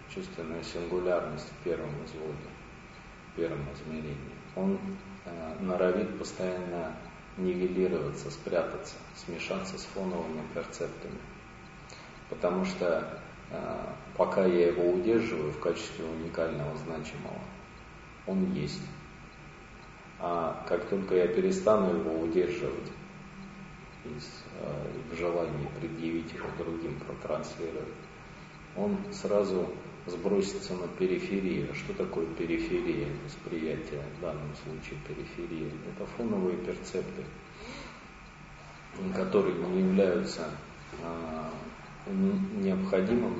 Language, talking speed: Russian, 90 wpm